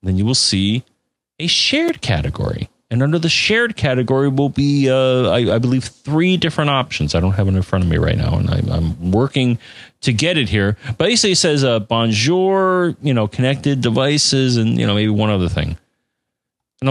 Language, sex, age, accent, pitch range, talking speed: English, male, 40-59, American, 105-150 Hz, 200 wpm